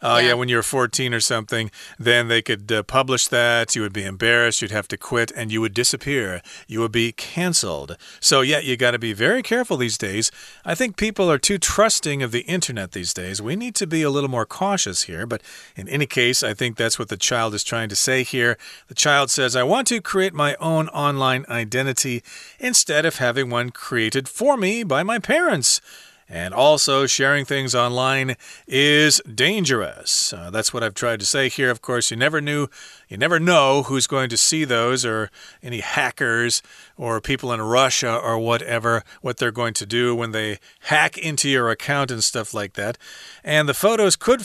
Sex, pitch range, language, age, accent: male, 115-145 Hz, Chinese, 40-59, American